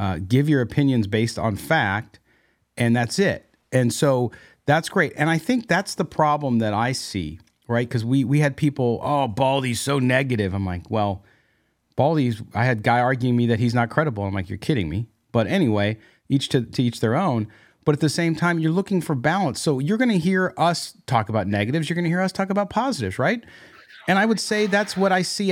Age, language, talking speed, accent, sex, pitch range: 40-59, English, 220 wpm, American, male, 120-175 Hz